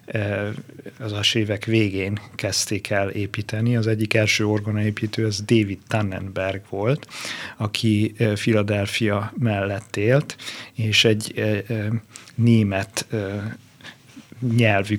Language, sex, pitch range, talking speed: Hungarian, male, 105-120 Hz, 100 wpm